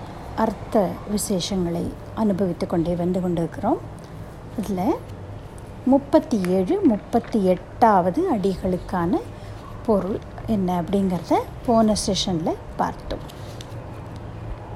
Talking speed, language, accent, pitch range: 75 wpm, Tamil, native, 180-255 Hz